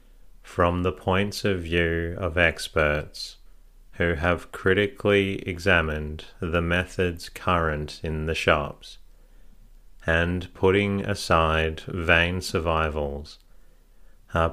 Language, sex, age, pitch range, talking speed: English, male, 30-49, 80-95 Hz, 95 wpm